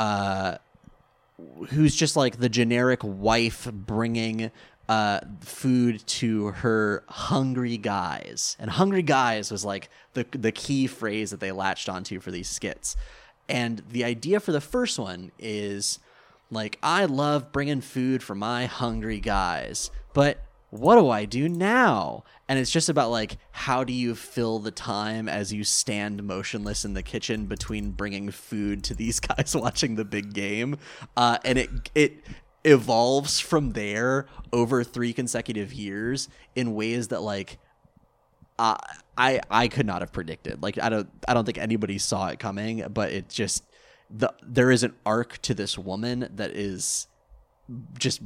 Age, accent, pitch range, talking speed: 20-39, American, 105-130 Hz, 155 wpm